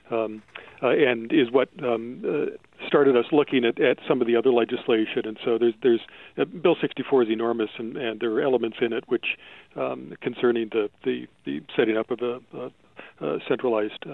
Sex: male